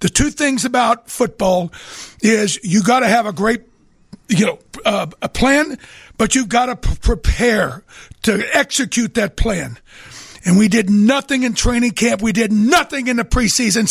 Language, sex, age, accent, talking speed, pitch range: English, male, 60-79, American, 175 wpm, 225-280 Hz